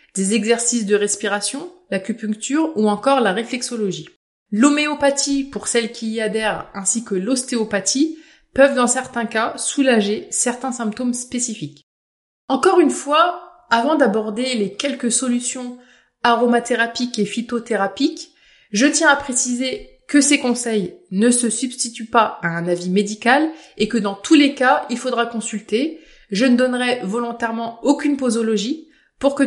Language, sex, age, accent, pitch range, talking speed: French, female, 20-39, French, 210-270 Hz, 140 wpm